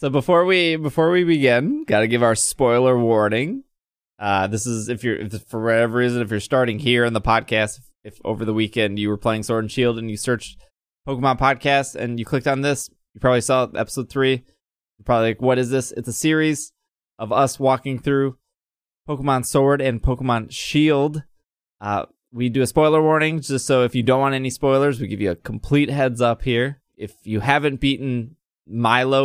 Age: 20-39